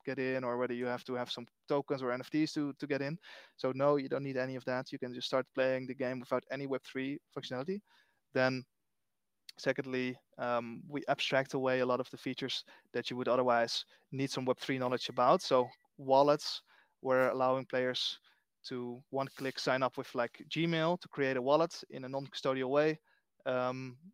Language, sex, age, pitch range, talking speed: English, male, 20-39, 125-145 Hz, 190 wpm